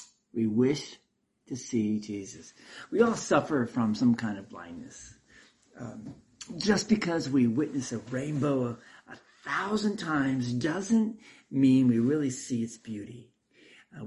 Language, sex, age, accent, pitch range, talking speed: English, male, 60-79, American, 120-165 Hz, 135 wpm